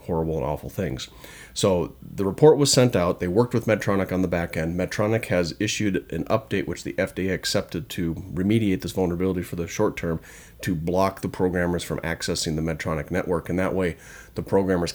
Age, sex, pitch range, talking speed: 40-59, male, 85-95 Hz, 195 wpm